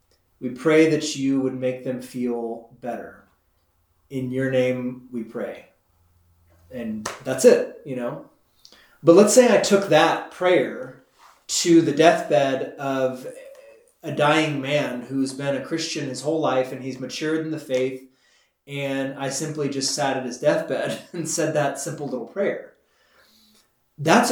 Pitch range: 125-160 Hz